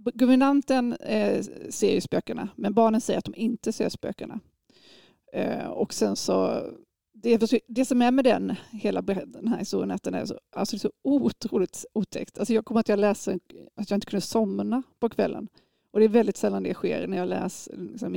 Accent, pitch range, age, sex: native, 205-245 Hz, 30-49, female